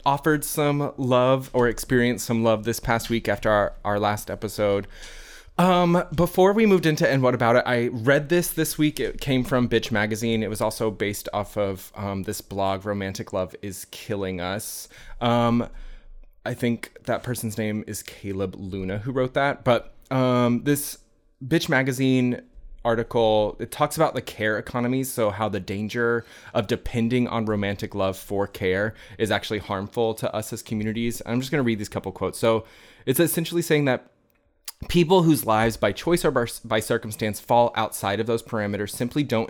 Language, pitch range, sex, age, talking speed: English, 105-130 Hz, male, 20-39, 180 wpm